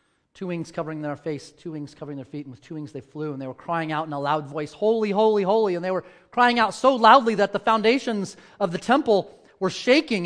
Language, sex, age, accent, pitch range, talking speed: English, male, 30-49, American, 135-225 Hz, 250 wpm